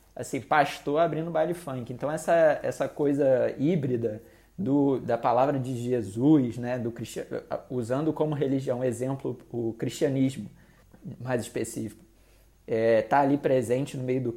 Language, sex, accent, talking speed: Portuguese, male, Brazilian, 115 wpm